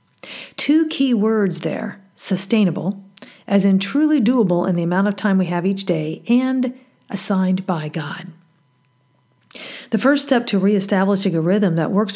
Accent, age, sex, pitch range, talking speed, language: American, 40-59, female, 170-205 Hz, 155 wpm, English